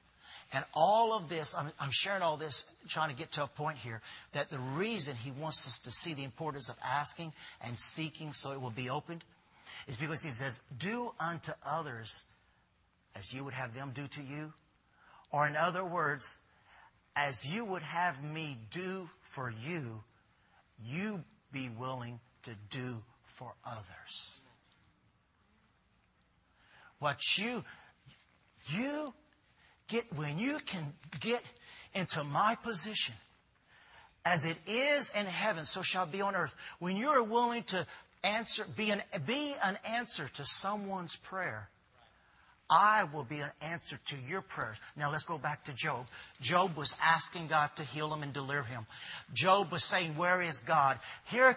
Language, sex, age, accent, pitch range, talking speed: English, male, 50-69, American, 135-190 Hz, 155 wpm